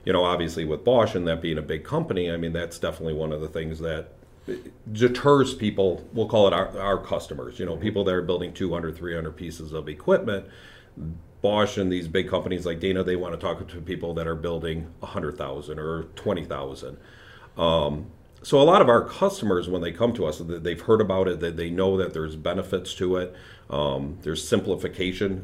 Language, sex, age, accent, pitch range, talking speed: English, male, 40-59, American, 85-100 Hz, 200 wpm